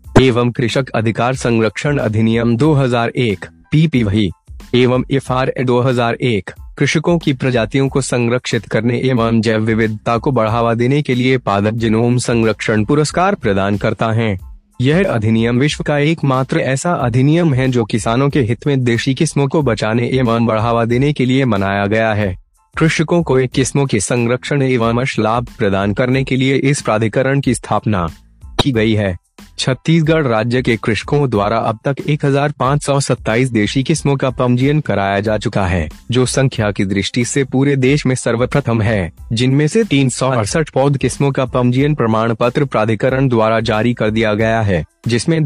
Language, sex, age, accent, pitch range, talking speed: Hindi, male, 30-49, native, 110-140 Hz, 155 wpm